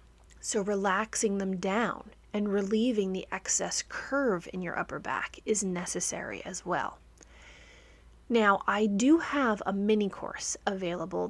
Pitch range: 180-220 Hz